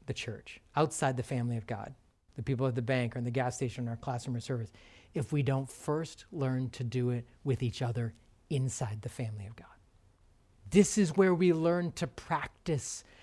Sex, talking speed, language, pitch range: male, 210 wpm, English, 120-195 Hz